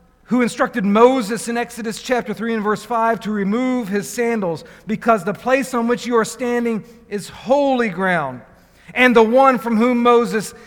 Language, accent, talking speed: English, American, 175 wpm